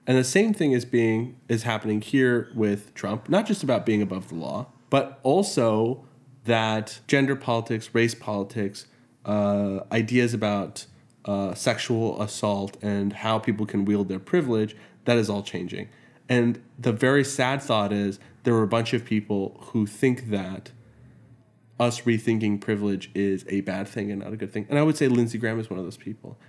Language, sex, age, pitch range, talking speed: English, male, 20-39, 110-130 Hz, 180 wpm